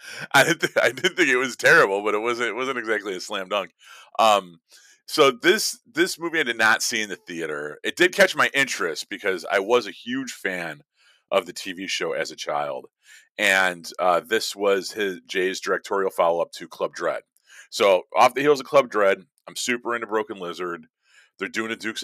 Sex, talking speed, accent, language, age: male, 205 wpm, American, English, 30-49